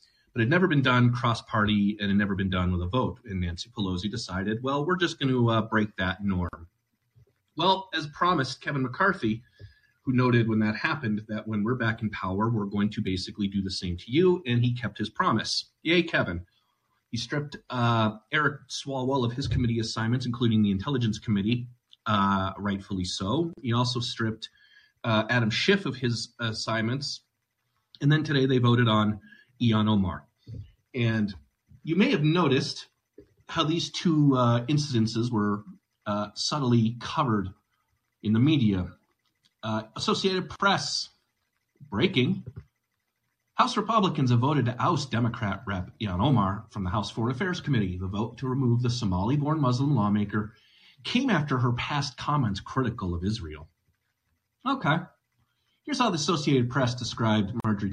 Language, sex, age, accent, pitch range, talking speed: English, male, 30-49, American, 105-140 Hz, 160 wpm